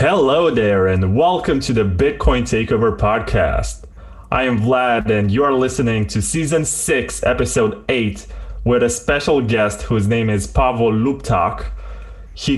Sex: male